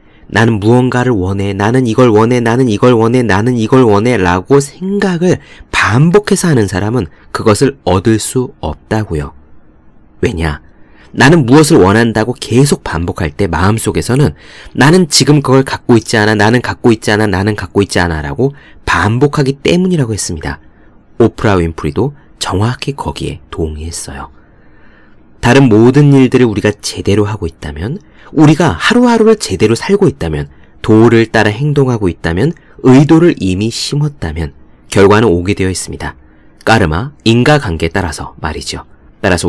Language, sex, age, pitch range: Korean, male, 30-49, 85-135 Hz